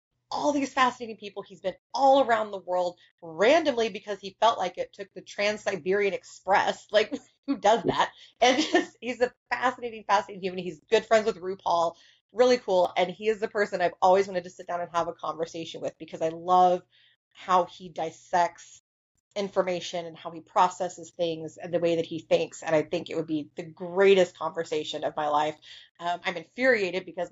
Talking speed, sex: 190 wpm, female